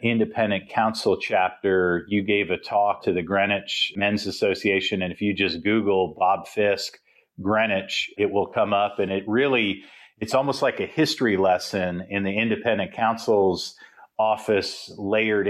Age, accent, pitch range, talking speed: 40-59, American, 95-105 Hz, 150 wpm